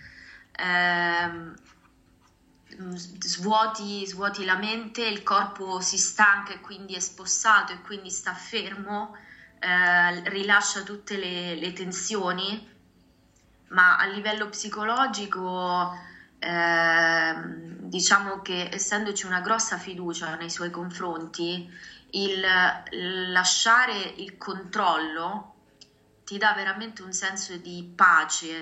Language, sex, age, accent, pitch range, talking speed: Italian, female, 20-39, native, 180-200 Hz, 100 wpm